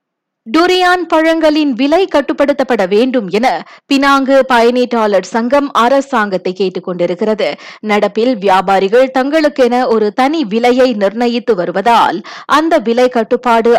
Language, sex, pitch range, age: Tamil, female, 215-275 Hz, 20-39